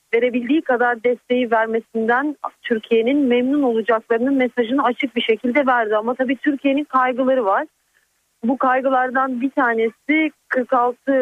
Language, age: Turkish, 40-59